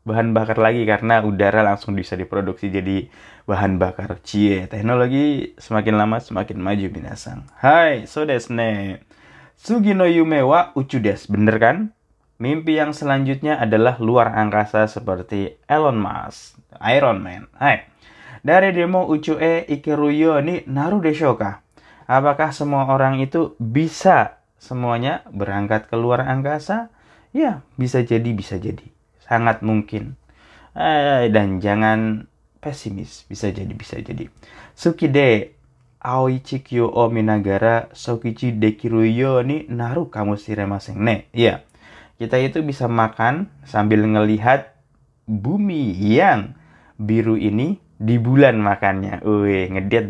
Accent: native